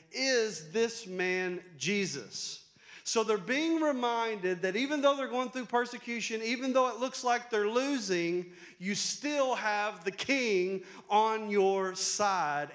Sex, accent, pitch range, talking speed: male, American, 140-205 Hz, 140 wpm